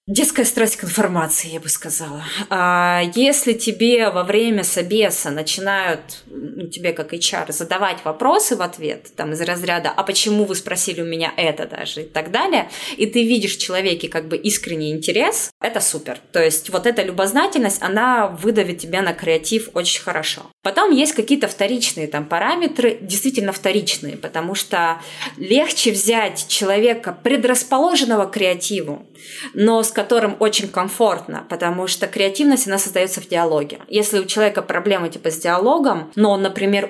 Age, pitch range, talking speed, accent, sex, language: 20-39, 170-220 Hz, 160 wpm, native, female, Russian